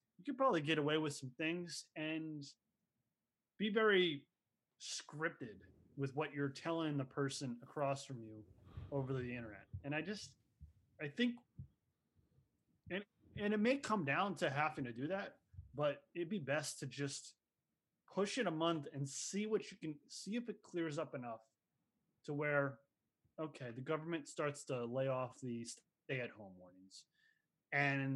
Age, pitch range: 20-39, 125-155 Hz